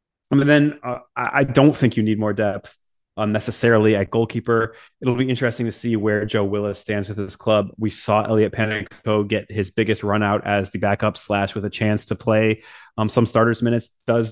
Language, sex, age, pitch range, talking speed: English, male, 20-39, 100-115 Hz, 205 wpm